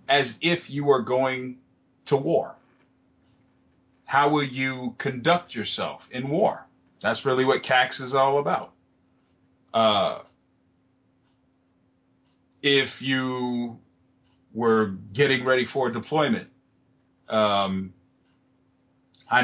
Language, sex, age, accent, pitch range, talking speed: English, male, 30-49, American, 110-130 Hz, 95 wpm